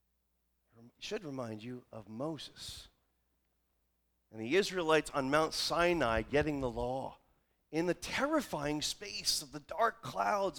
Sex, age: male, 40-59